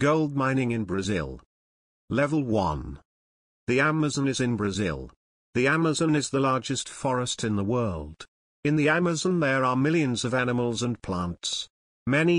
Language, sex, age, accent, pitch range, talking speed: Greek, male, 50-69, British, 100-140 Hz, 150 wpm